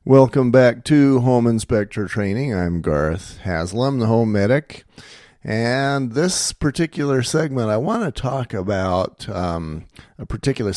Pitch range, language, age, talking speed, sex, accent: 85-120 Hz, English, 50-69, 135 wpm, male, American